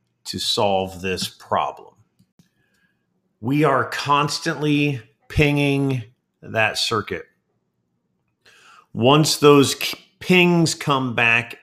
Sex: male